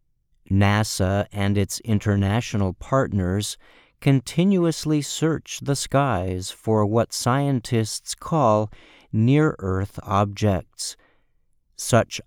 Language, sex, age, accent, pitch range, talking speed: English, male, 50-69, American, 100-135 Hz, 80 wpm